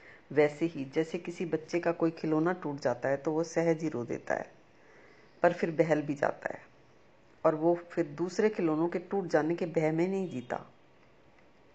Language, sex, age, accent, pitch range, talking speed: Hindi, female, 50-69, native, 165-205 Hz, 185 wpm